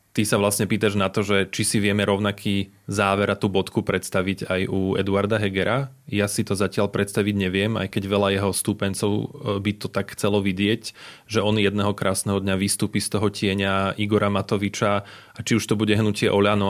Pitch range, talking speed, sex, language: 100-110 Hz, 195 wpm, male, Slovak